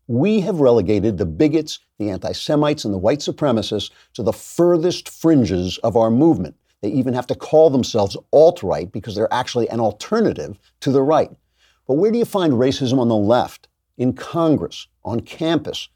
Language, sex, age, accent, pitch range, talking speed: English, male, 50-69, American, 110-155 Hz, 175 wpm